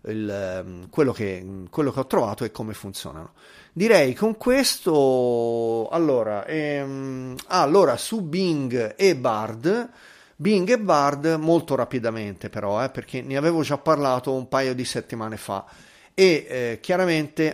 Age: 30-49